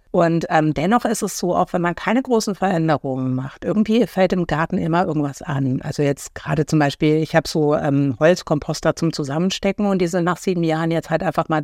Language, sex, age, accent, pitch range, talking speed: German, female, 50-69, German, 145-185 Hz, 215 wpm